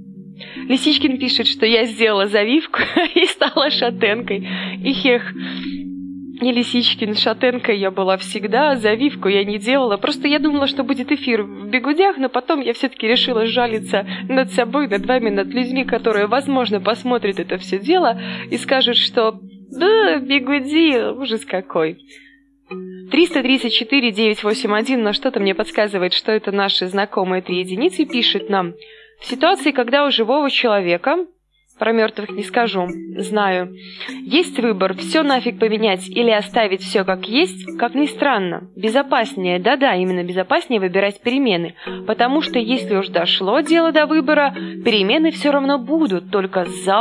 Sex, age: female, 20-39